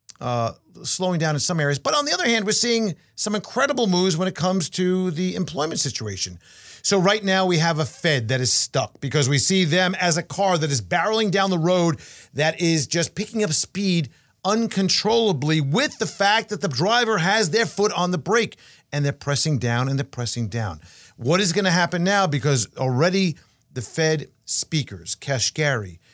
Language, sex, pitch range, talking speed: English, male, 130-185 Hz, 195 wpm